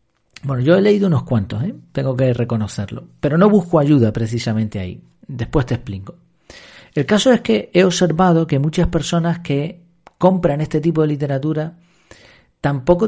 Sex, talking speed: male, 155 wpm